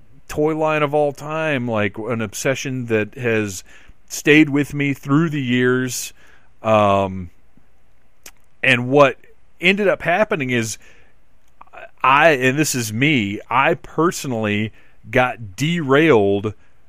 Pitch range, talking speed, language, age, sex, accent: 105-140 Hz, 115 wpm, English, 40-59, male, American